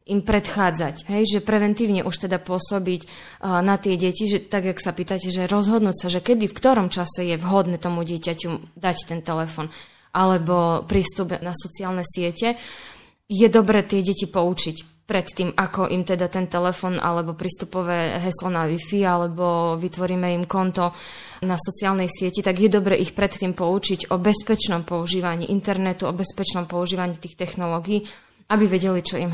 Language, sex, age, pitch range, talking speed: Slovak, female, 20-39, 175-200 Hz, 165 wpm